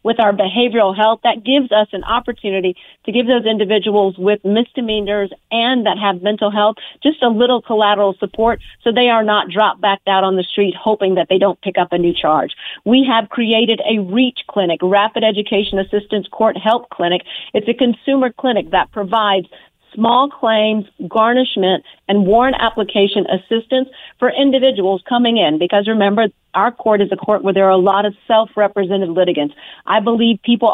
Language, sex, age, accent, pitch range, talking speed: English, female, 50-69, American, 200-235 Hz, 180 wpm